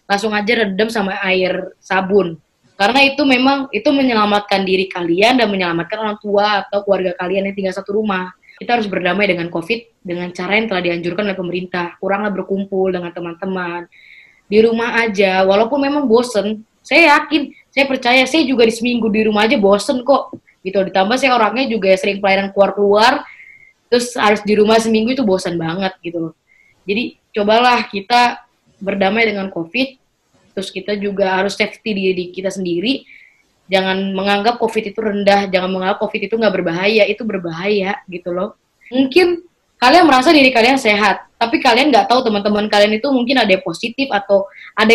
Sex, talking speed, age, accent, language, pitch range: female, 165 wpm, 20-39, native, Indonesian, 190-240 Hz